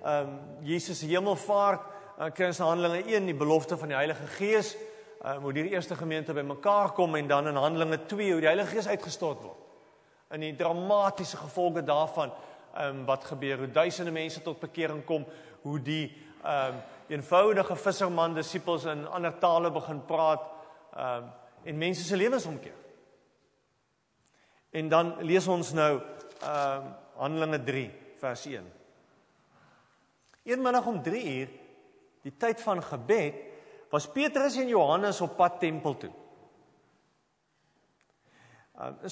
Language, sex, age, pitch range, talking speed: English, male, 40-59, 155-205 Hz, 140 wpm